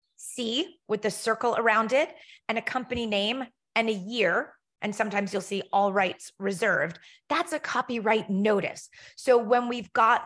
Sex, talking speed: female, 165 wpm